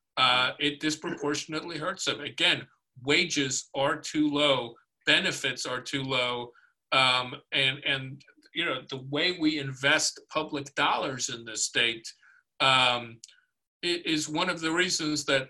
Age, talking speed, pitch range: 50-69, 140 wpm, 135-155 Hz